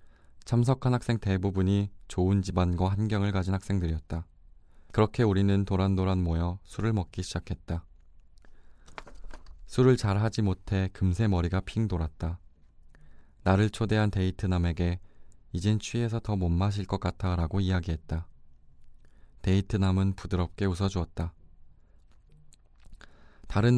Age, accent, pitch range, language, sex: 20-39, native, 85-100 Hz, Korean, male